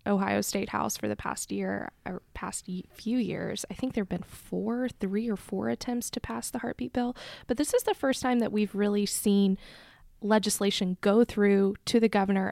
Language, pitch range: English, 195-235 Hz